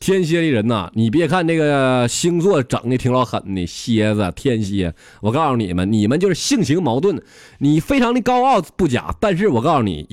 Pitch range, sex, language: 90-130 Hz, male, Chinese